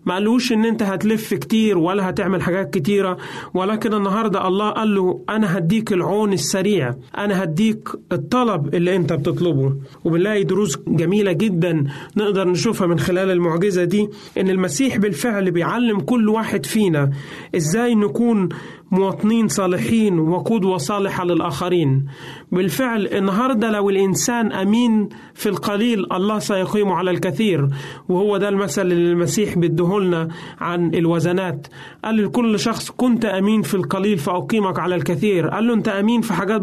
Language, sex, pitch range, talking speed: Arabic, male, 175-210 Hz, 140 wpm